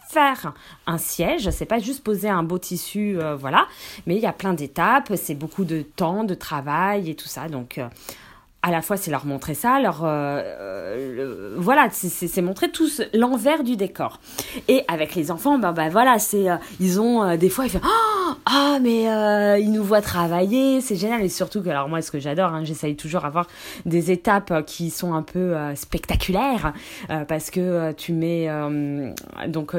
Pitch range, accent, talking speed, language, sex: 160-225 Hz, French, 210 wpm, French, female